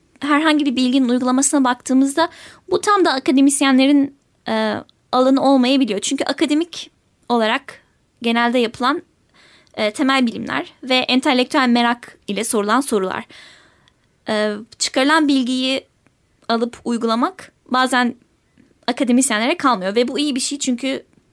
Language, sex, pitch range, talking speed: Turkish, female, 220-275 Hz, 115 wpm